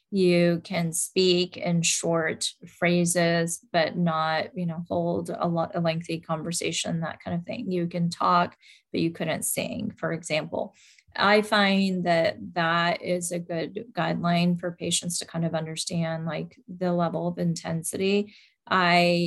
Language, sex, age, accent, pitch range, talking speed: English, female, 20-39, American, 165-180 Hz, 150 wpm